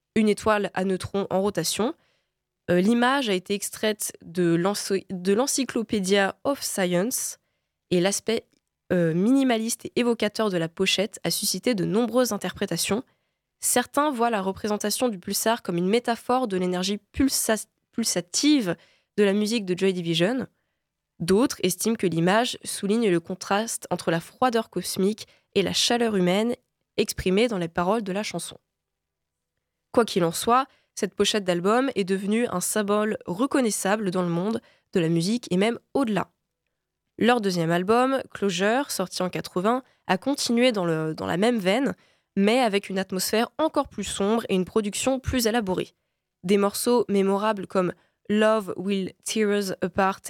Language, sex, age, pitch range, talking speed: French, female, 20-39, 185-230 Hz, 150 wpm